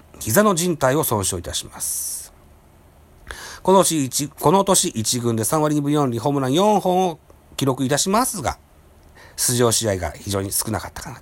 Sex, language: male, Japanese